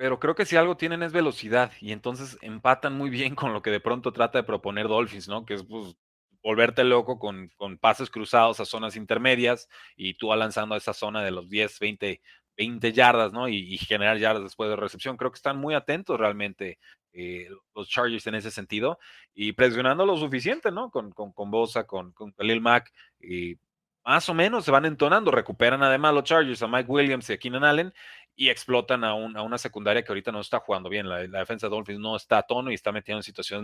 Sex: male